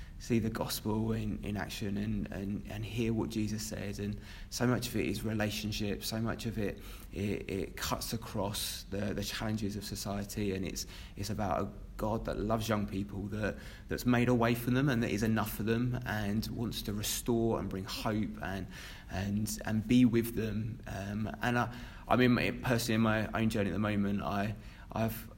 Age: 20-39